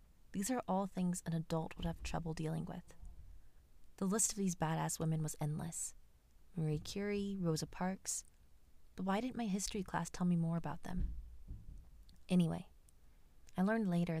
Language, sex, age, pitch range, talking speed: English, female, 20-39, 155-185 Hz, 160 wpm